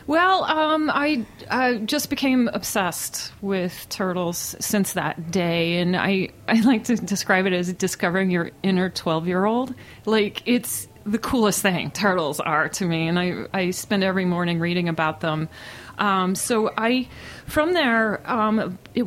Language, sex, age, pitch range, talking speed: English, female, 30-49, 185-230 Hz, 160 wpm